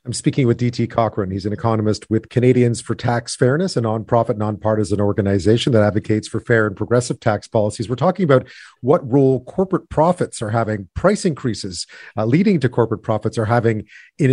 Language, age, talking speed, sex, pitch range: English, 40-59, 185 wpm, male, 110-140 Hz